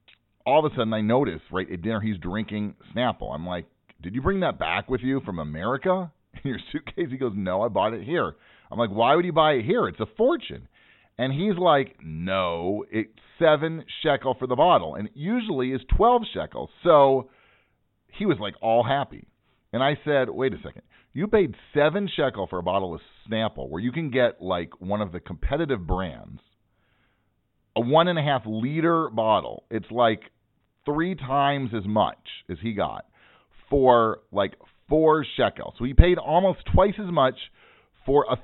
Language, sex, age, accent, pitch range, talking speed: English, male, 40-59, American, 110-155 Hz, 185 wpm